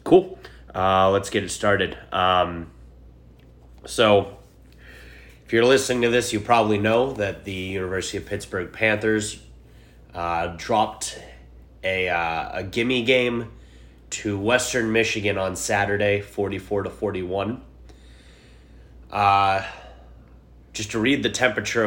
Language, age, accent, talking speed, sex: English, 30-49, American, 120 wpm, male